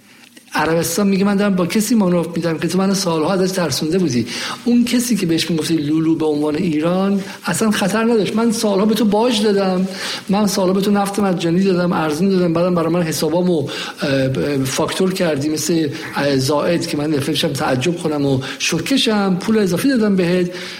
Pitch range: 160-205 Hz